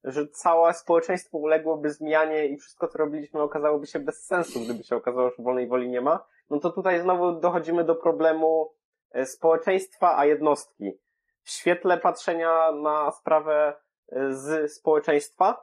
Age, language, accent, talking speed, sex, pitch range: 20-39, Polish, native, 145 wpm, male, 150-180 Hz